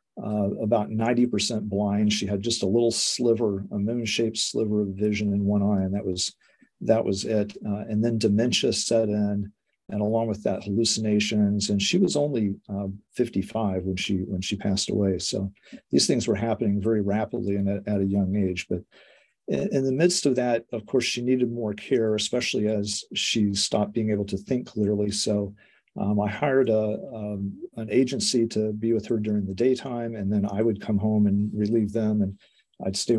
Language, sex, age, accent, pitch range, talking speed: English, male, 50-69, American, 100-115 Hz, 195 wpm